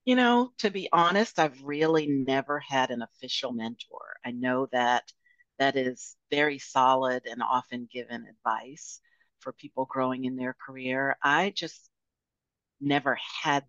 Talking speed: 145 wpm